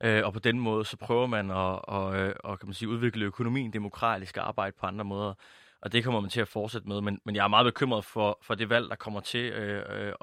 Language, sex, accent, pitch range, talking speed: Danish, male, native, 100-115 Hz, 270 wpm